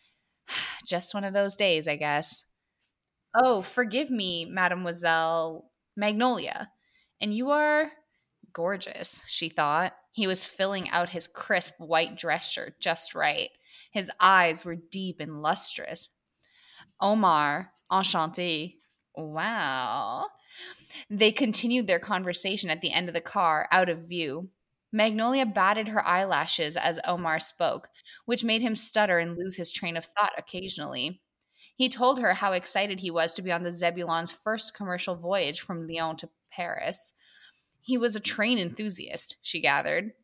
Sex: female